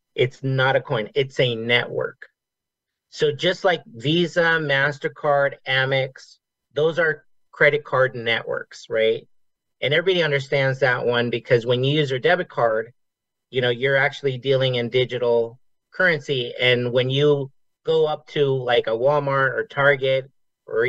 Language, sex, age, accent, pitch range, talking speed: English, male, 50-69, American, 125-160 Hz, 150 wpm